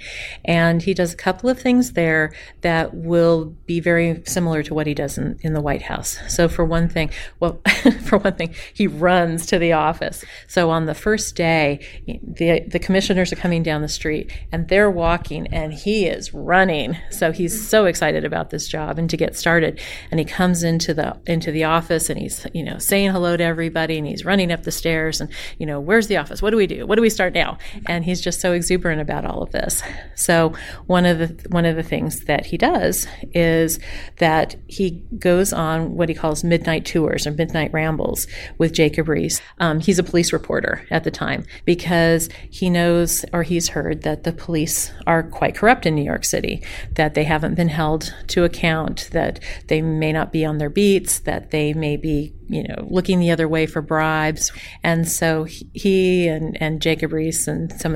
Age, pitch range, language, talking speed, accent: 40-59, 160-175 Hz, English, 205 wpm, American